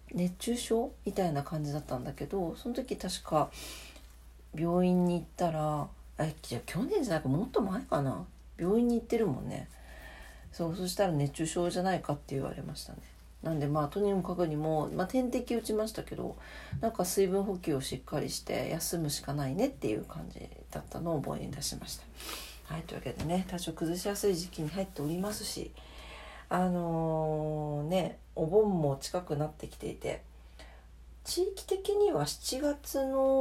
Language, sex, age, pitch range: Japanese, female, 40-59, 145-200 Hz